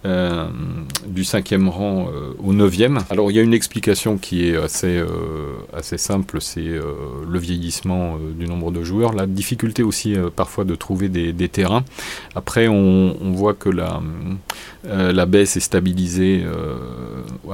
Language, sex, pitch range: French, male, 85-100 Hz